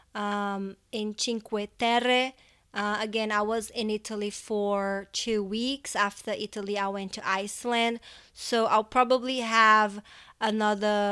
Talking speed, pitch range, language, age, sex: 130 wpm, 200-225 Hz, English, 20-39, female